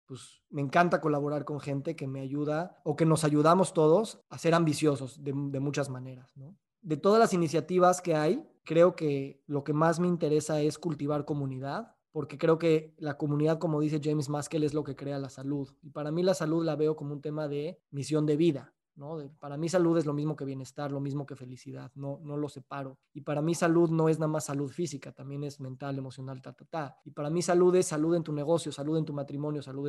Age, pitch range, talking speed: 20-39, 140-170 Hz, 230 wpm